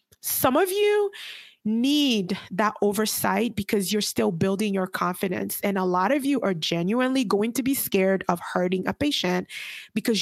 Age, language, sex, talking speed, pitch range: 20-39, English, female, 165 wpm, 185-225 Hz